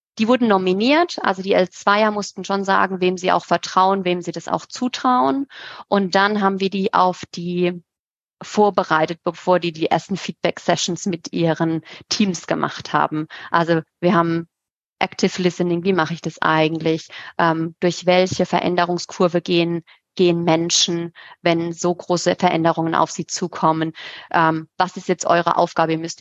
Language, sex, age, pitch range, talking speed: German, female, 30-49, 165-185 Hz, 155 wpm